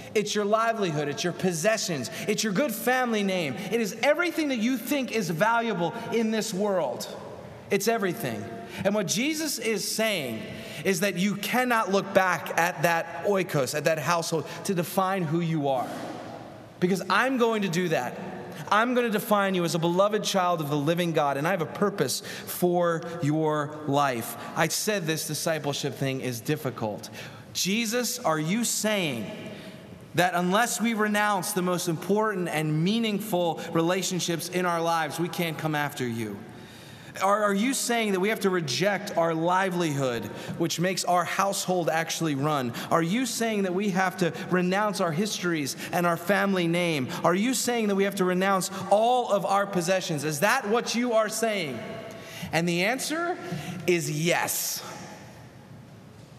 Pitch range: 165-210 Hz